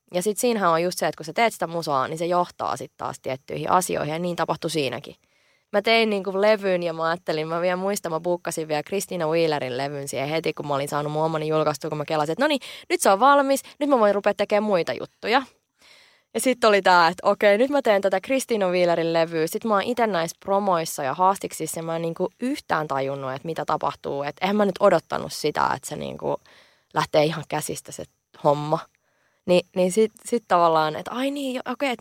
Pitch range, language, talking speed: 160-220 Hz, Finnish, 220 wpm